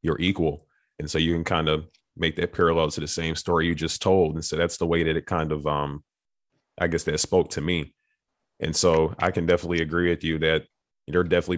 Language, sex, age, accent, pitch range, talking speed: English, male, 30-49, American, 80-85 Hz, 240 wpm